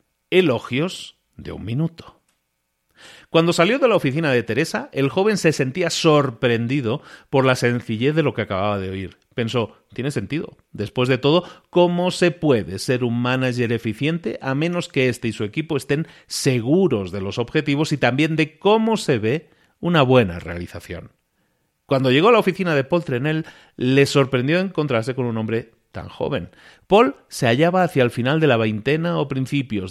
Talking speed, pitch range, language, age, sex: 170 wpm, 110-155 Hz, Spanish, 40-59, male